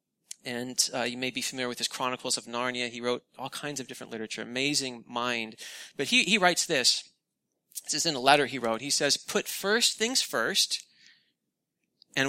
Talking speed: 190 wpm